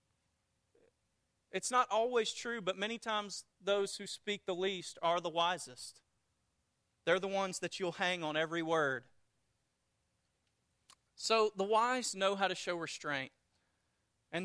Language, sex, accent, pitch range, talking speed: English, male, American, 145-220 Hz, 135 wpm